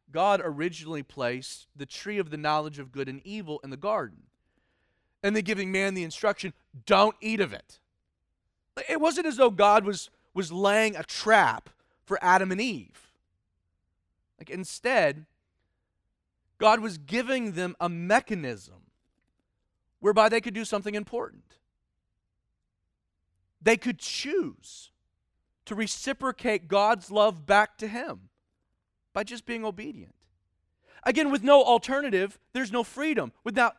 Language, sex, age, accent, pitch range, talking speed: English, male, 30-49, American, 160-235 Hz, 135 wpm